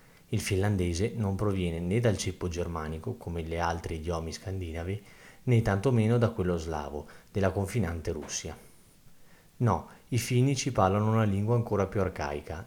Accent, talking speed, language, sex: native, 140 wpm, Italian, male